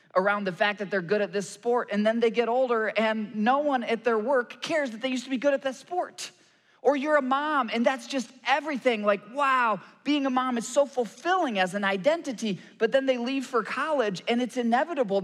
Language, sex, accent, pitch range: English, male, American, 180-250 Hz